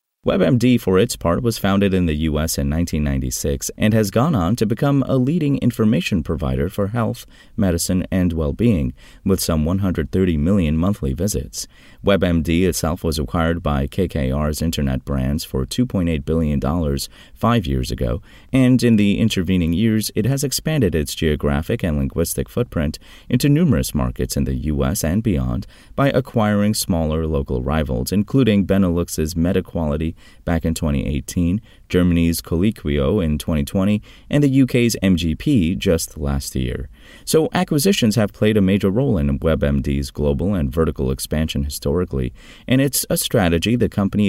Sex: male